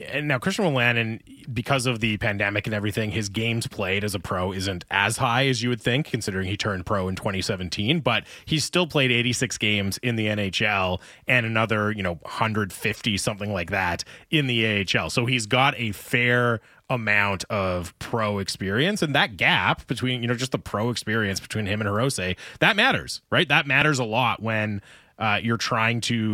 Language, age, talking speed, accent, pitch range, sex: English, 20-39, 195 wpm, American, 105-130 Hz, male